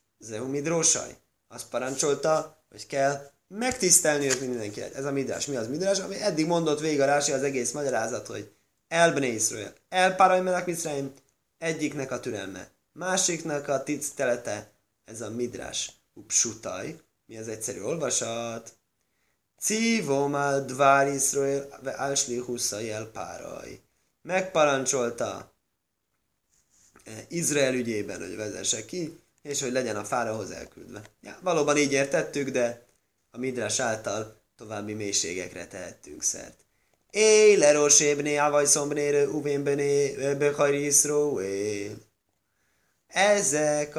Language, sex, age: Hungarian, male, 20-39